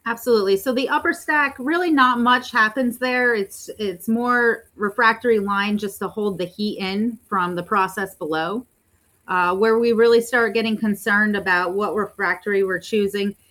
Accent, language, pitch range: American, English, 190-230 Hz